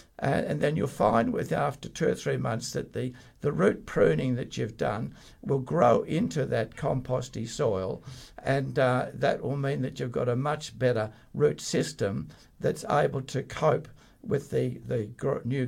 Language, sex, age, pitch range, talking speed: English, male, 60-79, 115-145 Hz, 170 wpm